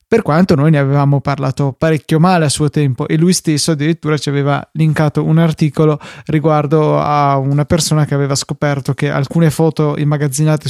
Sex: male